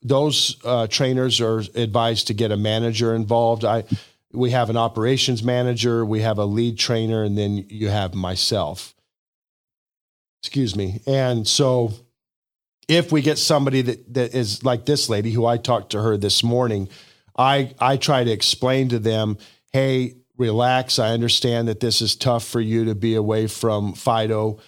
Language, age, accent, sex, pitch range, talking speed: English, 40-59, American, male, 110-125 Hz, 170 wpm